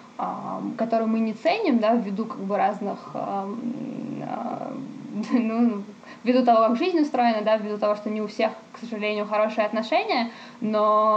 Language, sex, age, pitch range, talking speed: Russian, female, 20-39, 210-245 Hz, 155 wpm